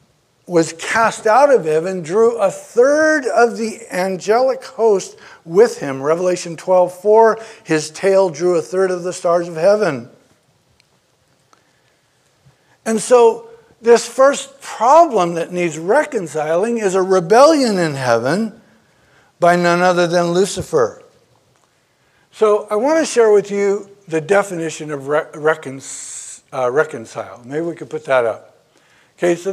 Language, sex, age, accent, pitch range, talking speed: English, male, 60-79, American, 165-225 Hz, 130 wpm